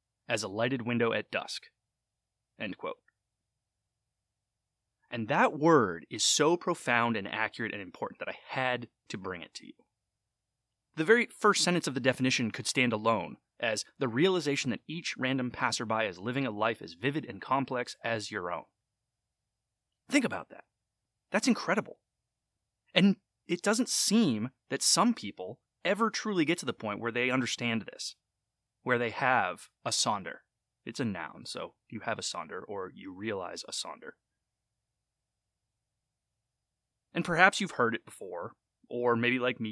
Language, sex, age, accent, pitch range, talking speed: English, male, 30-49, American, 110-165 Hz, 155 wpm